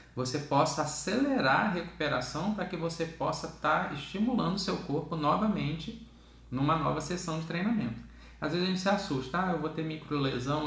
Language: Portuguese